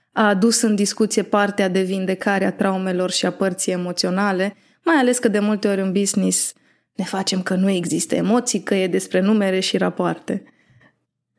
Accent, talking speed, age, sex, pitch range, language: native, 175 wpm, 20-39, female, 195-240 Hz, Romanian